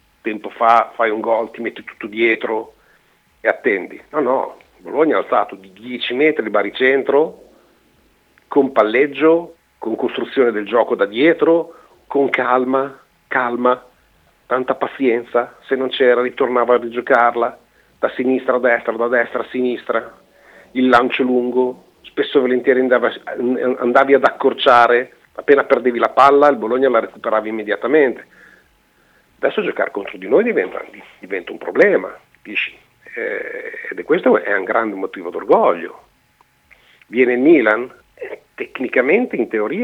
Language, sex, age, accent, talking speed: Italian, male, 50-69, native, 135 wpm